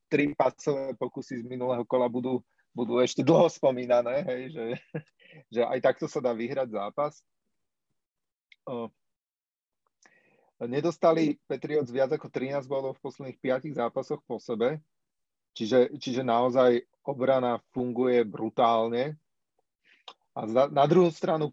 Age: 30-49